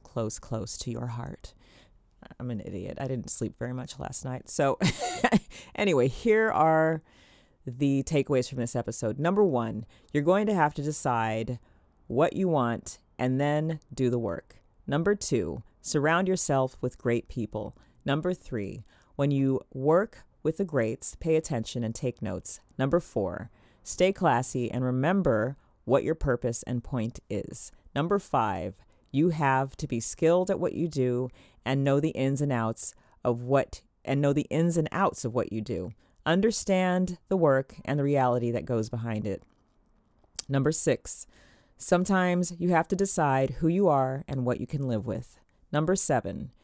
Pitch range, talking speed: 120-160 Hz, 165 wpm